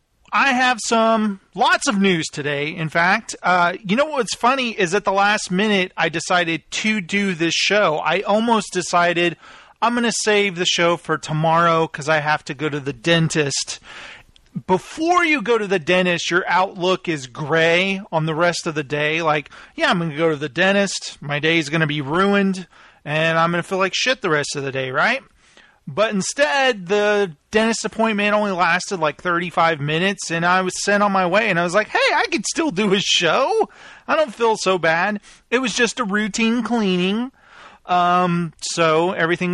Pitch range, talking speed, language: 160-205 Hz, 200 wpm, English